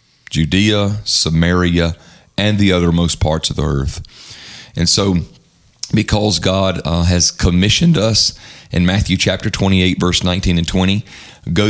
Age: 40-59